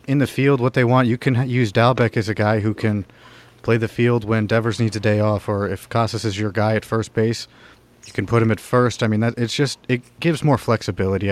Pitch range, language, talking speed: 105-120 Hz, English, 255 wpm